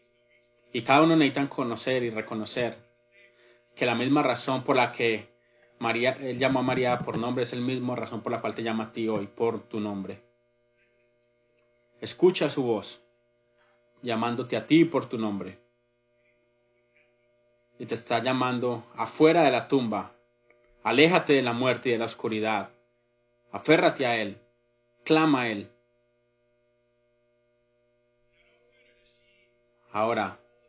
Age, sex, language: 30-49, male, English